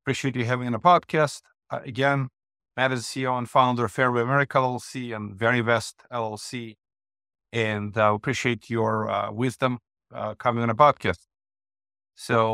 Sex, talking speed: male, 165 wpm